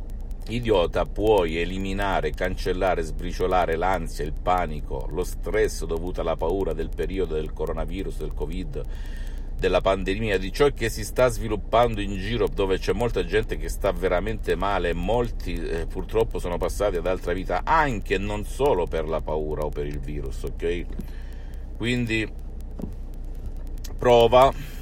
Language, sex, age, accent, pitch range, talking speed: Italian, male, 50-69, native, 80-105 Hz, 145 wpm